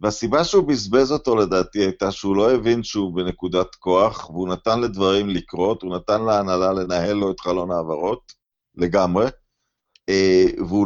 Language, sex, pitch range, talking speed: Hebrew, male, 100-135 Hz, 145 wpm